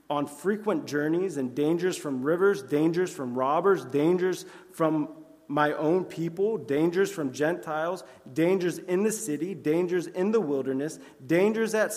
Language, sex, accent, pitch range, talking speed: English, male, American, 140-185 Hz, 140 wpm